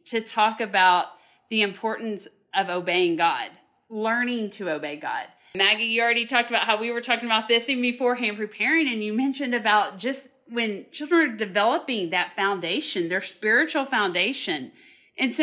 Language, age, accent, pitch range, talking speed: English, 40-59, American, 190-250 Hz, 160 wpm